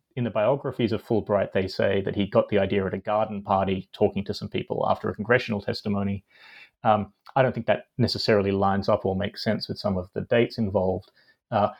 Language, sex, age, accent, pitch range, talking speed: English, male, 30-49, Australian, 100-120 Hz, 215 wpm